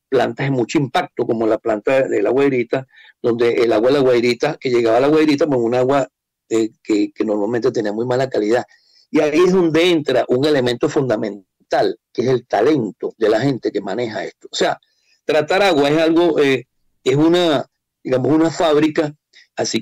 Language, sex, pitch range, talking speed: Spanish, male, 125-170 Hz, 190 wpm